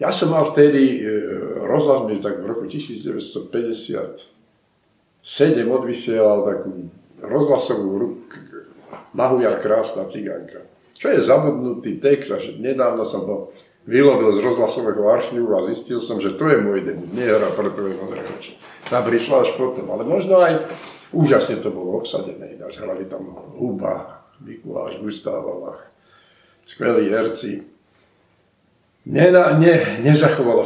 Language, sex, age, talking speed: Slovak, male, 50-69, 125 wpm